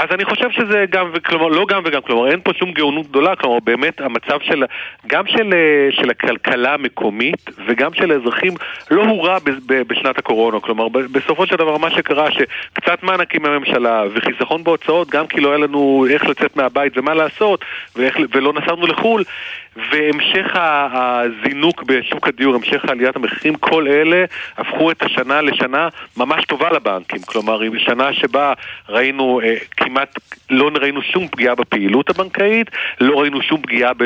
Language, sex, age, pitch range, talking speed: Hebrew, male, 40-59, 130-180 Hz, 155 wpm